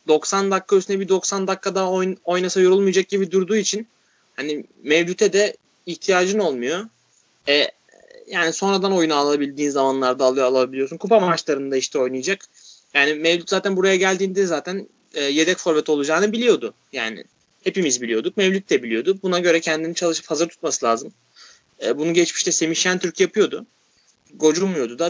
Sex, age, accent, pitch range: male, 30-49, native, 145-190 Hz